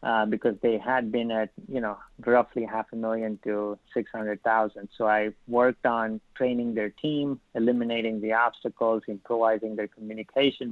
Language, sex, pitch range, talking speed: English, male, 110-130 Hz, 150 wpm